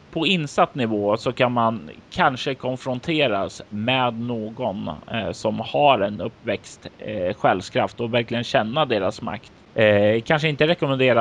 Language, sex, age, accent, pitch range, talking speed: Swedish, male, 30-49, native, 110-130 Hz, 135 wpm